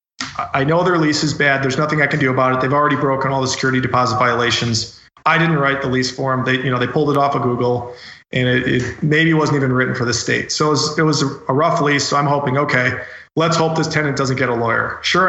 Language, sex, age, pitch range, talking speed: English, male, 40-59, 130-155 Hz, 265 wpm